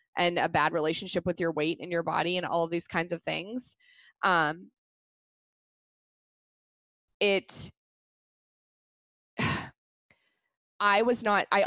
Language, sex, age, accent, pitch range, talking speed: English, female, 20-39, American, 170-205 Hz, 120 wpm